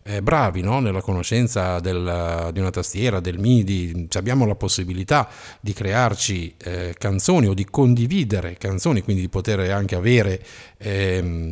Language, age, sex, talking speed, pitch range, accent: Italian, 50-69, male, 145 wpm, 95-125 Hz, native